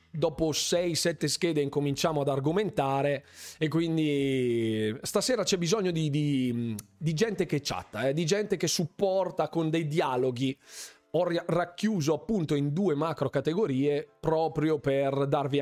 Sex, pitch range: male, 120-165 Hz